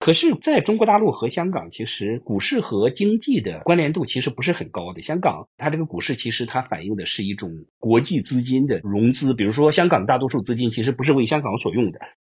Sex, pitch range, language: male, 110-170 Hz, Chinese